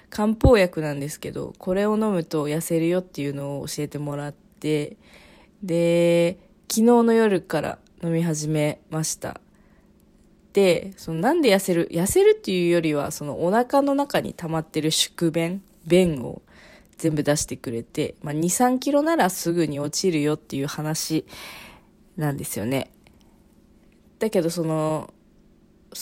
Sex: female